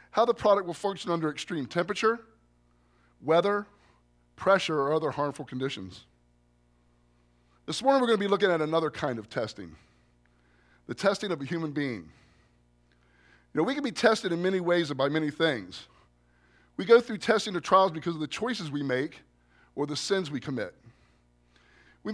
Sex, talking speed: male, 170 wpm